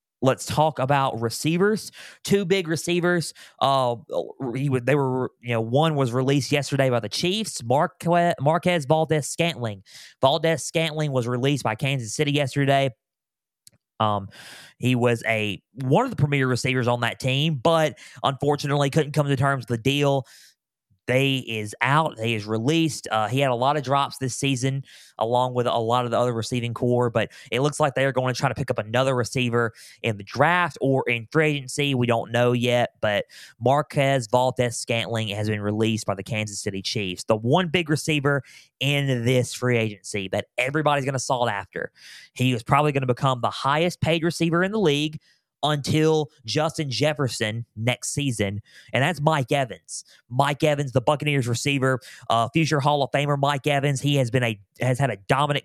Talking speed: 180 wpm